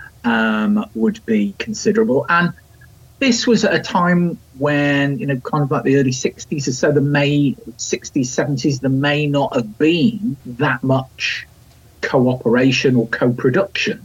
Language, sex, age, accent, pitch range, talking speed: English, male, 40-59, British, 125-185 Hz, 150 wpm